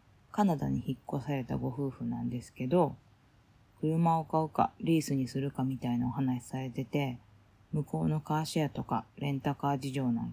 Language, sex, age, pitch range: Japanese, female, 20-39, 120-155 Hz